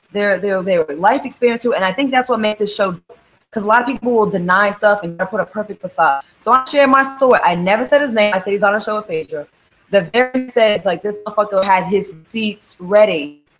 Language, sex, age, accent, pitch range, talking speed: English, female, 20-39, American, 185-260 Hz, 245 wpm